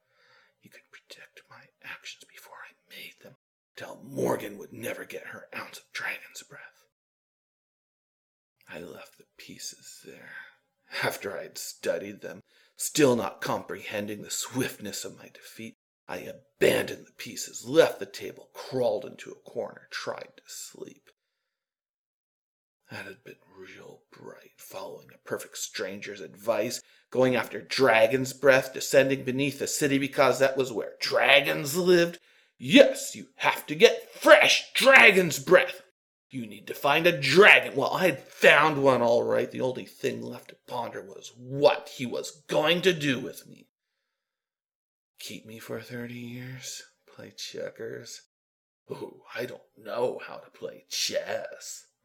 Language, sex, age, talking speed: English, male, 40-59, 145 wpm